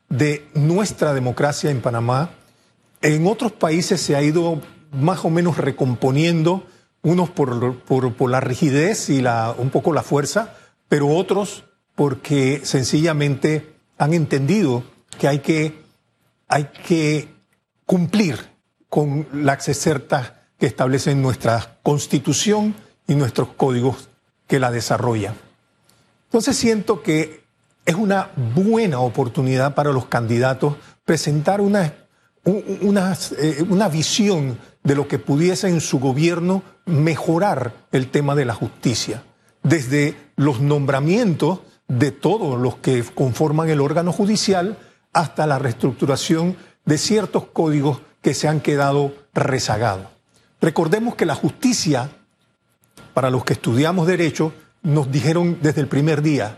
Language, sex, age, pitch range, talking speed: Spanish, male, 50-69, 140-175 Hz, 125 wpm